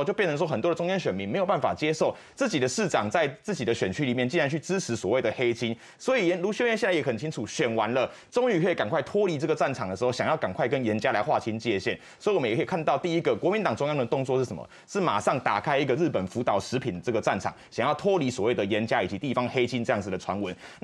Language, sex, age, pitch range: Chinese, male, 20-39, 130-195 Hz